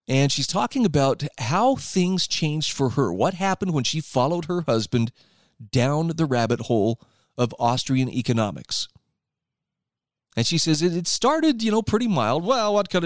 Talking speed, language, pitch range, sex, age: 160 wpm, English, 125-175 Hz, male, 40-59